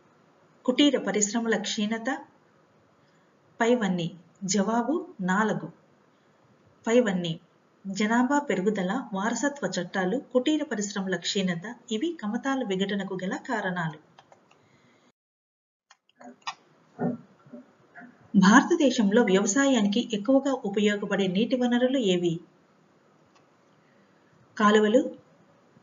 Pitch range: 190-250 Hz